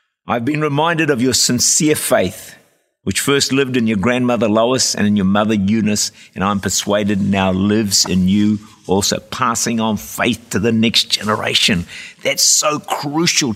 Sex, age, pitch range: male, 50-69, 105-145 Hz